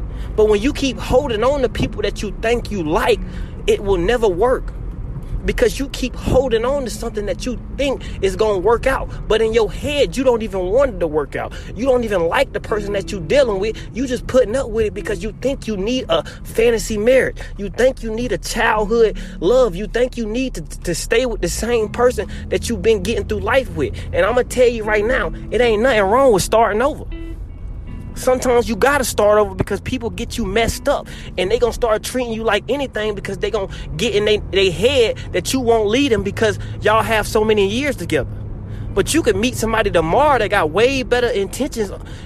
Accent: American